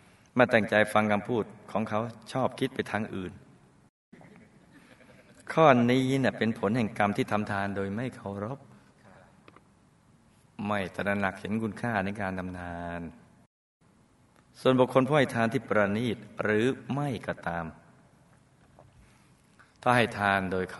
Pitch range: 90-115 Hz